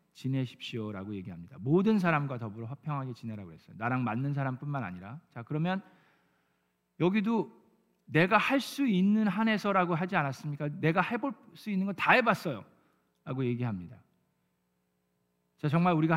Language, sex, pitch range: Korean, male, 105-170 Hz